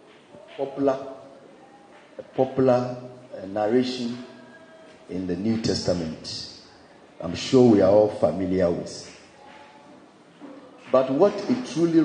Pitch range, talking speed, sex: 120-155 Hz, 100 wpm, male